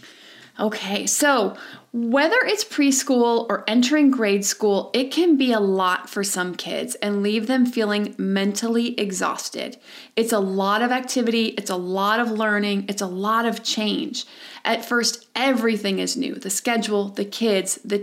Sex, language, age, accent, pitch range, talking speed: female, English, 30-49, American, 205-255 Hz, 160 wpm